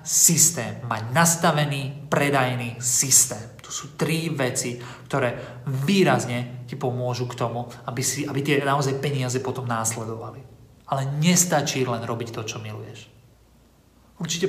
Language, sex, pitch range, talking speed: Slovak, male, 125-155 Hz, 130 wpm